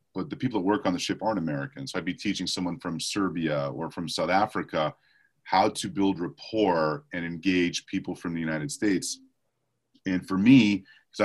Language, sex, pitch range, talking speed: English, male, 85-100 Hz, 190 wpm